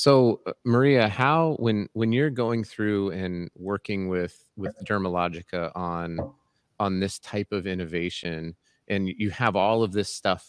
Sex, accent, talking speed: male, American, 150 wpm